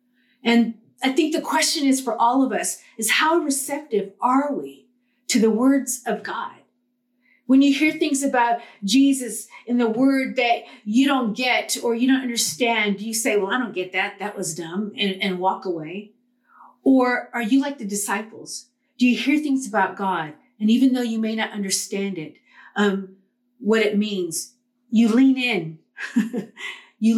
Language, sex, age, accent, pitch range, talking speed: English, female, 40-59, American, 200-250 Hz, 175 wpm